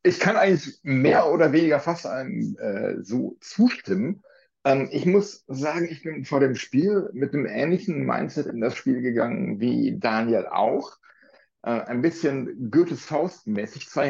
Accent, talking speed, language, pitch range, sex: German, 160 wpm, German, 125-165 Hz, male